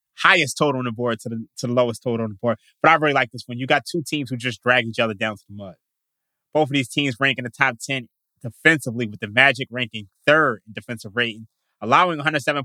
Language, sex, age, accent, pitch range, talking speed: English, male, 20-39, American, 125-160 Hz, 250 wpm